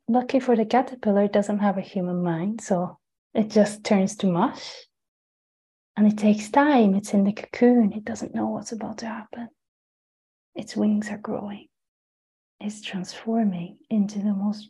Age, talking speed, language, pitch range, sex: 30-49, 165 wpm, English, 200-230 Hz, female